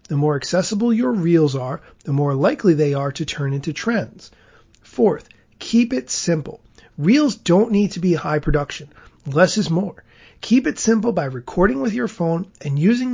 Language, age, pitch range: English, 30-49, 150-200 Hz